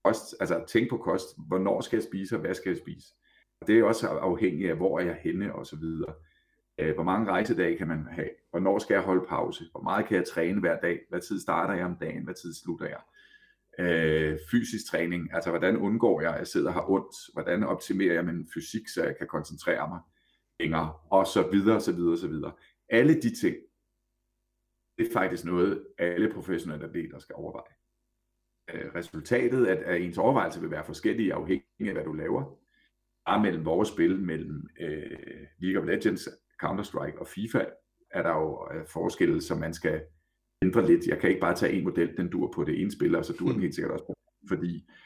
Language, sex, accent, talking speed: Danish, male, native, 205 wpm